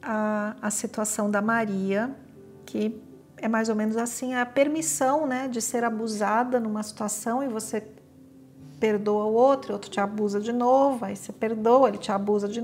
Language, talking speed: Portuguese, 175 wpm